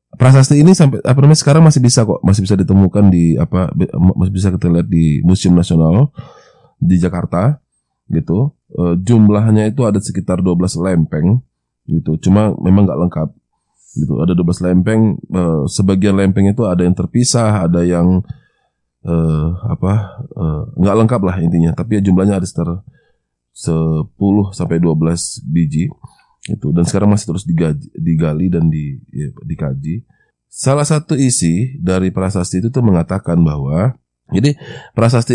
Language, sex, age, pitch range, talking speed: Indonesian, male, 20-39, 85-110 Hz, 145 wpm